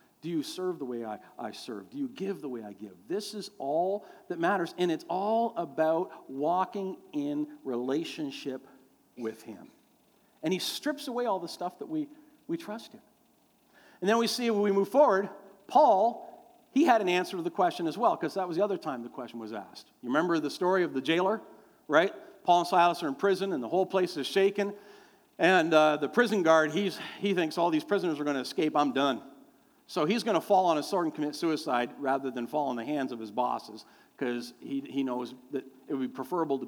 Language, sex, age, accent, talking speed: English, male, 50-69, American, 220 wpm